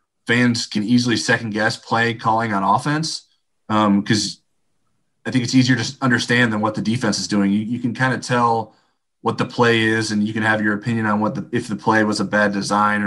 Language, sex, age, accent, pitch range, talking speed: English, male, 20-39, American, 105-125 Hz, 220 wpm